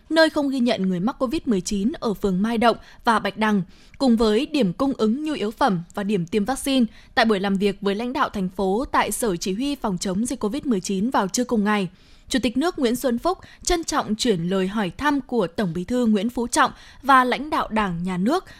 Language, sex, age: Vietnamese, female, 20-39